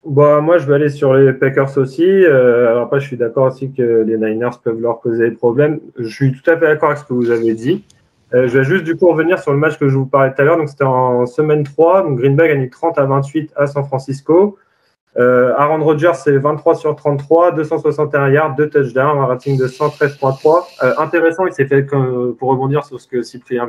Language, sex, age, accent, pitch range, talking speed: French, male, 20-39, French, 125-150 Hz, 240 wpm